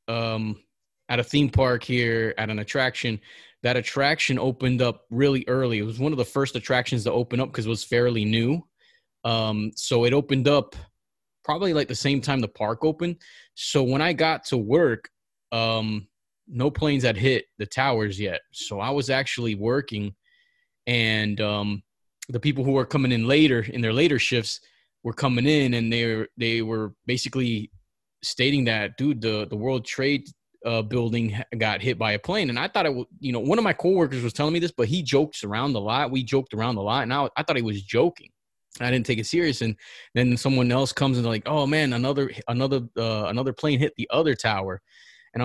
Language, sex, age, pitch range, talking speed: English, male, 20-39, 115-140 Hz, 205 wpm